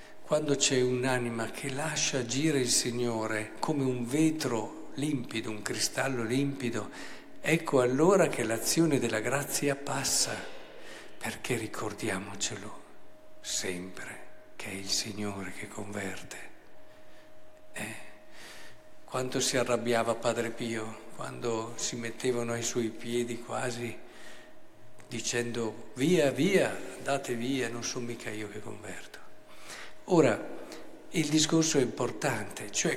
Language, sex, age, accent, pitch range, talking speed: Italian, male, 50-69, native, 115-140 Hz, 110 wpm